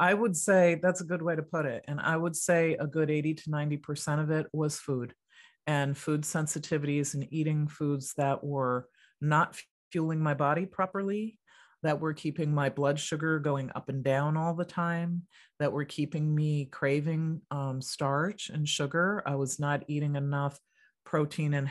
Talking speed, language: 180 wpm, English